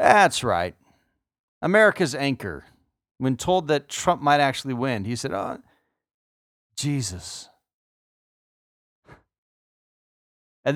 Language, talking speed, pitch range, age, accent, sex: English, 90 wpm, 110-145 Hz, 40-59, American, male